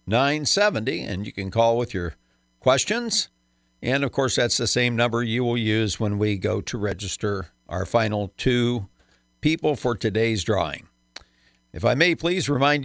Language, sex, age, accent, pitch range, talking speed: English, male, 50-69, American, 100-130 Hz, 170 wpm